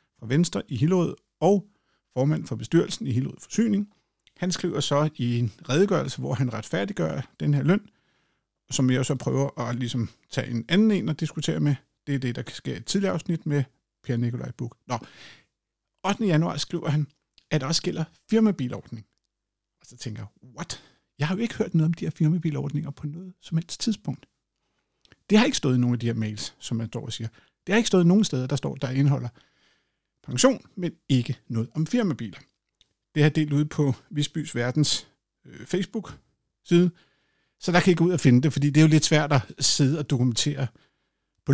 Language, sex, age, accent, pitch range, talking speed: Danish, male, 50-69, native, 130-180 Hz, 200 wpm